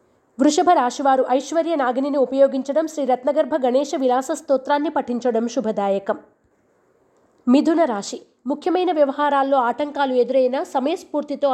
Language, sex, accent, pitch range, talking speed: Telugu, female, native, 245-295 Hz, 100 wpm